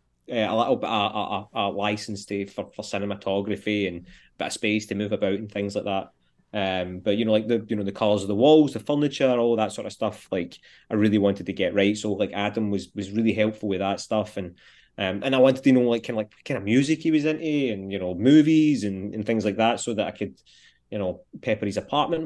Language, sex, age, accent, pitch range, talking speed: English, male, 20-39, British, 100-125 Hz, 250 wpm